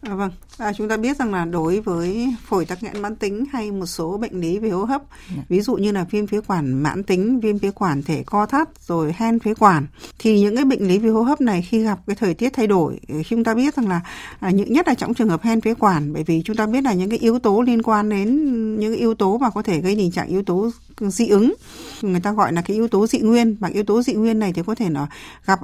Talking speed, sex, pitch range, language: 270 wpm, female, 180-230 Hz, Vietnamese